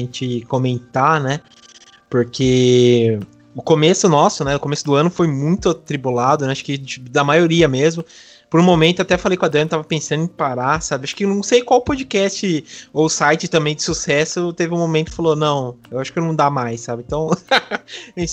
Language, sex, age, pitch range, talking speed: Portuguese, male, 20-39, 130-160 Hz, 200 wpm